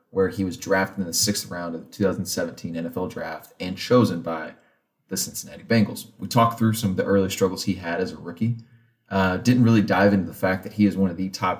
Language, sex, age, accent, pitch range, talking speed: English, male, 30-49, American, 90-105 Hz, 240 wpm